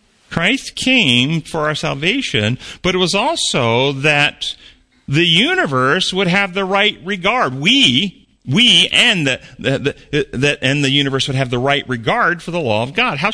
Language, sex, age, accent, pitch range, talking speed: English, male, 40-59, American, 135-210 Hz, 160 wpm